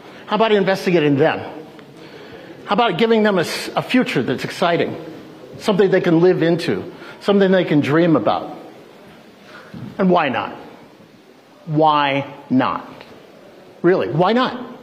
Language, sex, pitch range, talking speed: English, male, 165-230 Hz, 125 wpm